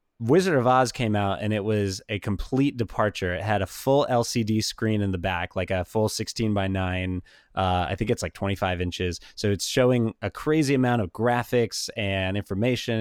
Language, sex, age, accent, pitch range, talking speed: English, male, 20-39, American, 100-120 Hz, 200 wpm